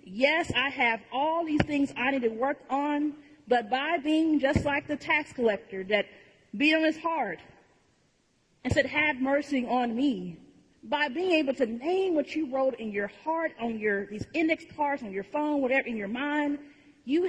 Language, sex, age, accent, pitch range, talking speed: English, female, 40-59, American, 220-285 Hz, 185 wpm